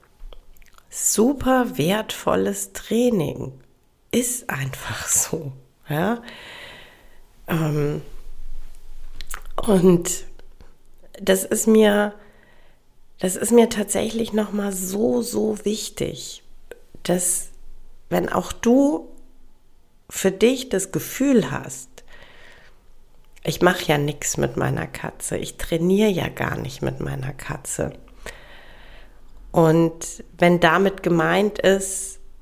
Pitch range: 155-210 Hz